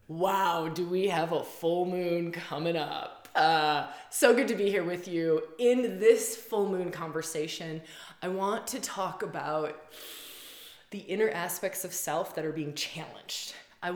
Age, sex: 20-39, female